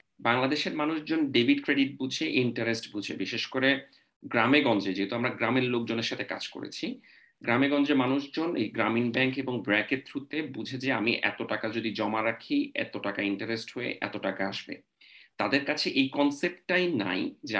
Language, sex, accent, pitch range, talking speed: Bengali, male, native, 115-170 Hz, 160 wpm